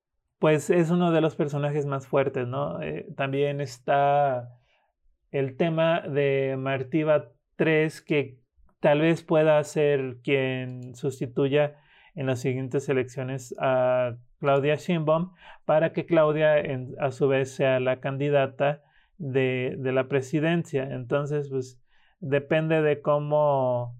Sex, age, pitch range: male, 30-49, 130-150 Hz